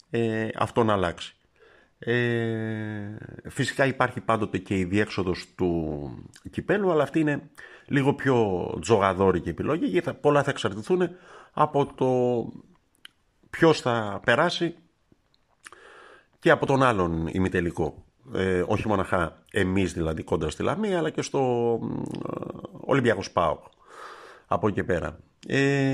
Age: 50-69